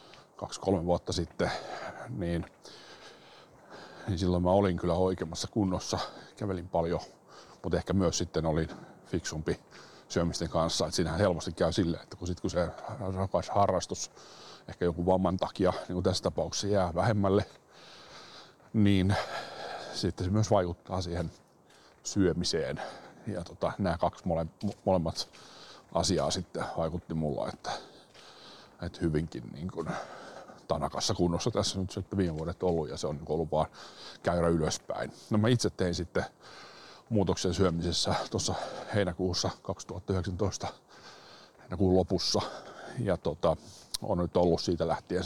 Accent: native